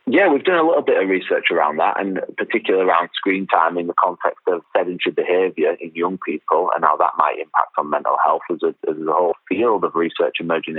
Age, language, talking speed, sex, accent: 30-49, English, 230 wpm, male, British